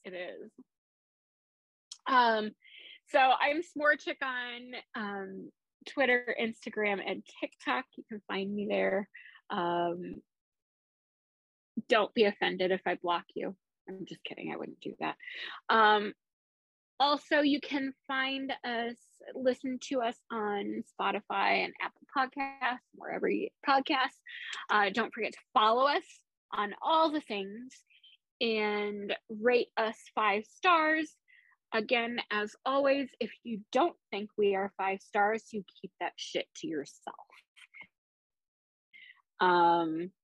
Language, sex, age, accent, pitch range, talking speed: English, female, 20-39, American, 205-295 Hz, 120 wpm